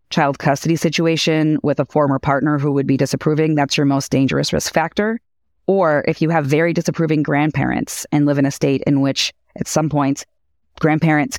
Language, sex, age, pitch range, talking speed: English, female, 30-49, 140-160 Hz, 185 wpm